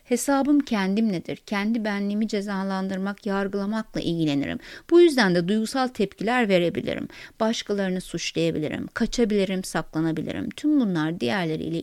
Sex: female